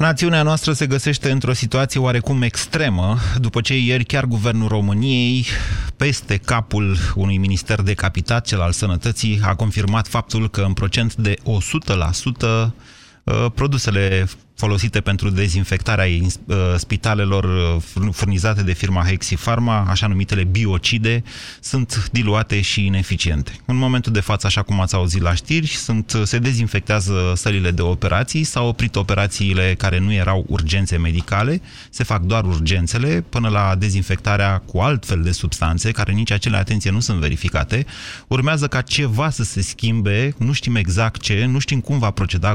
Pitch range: 95-120 Hz